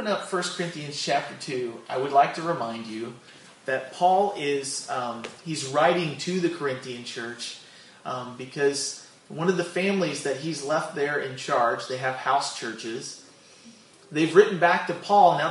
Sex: male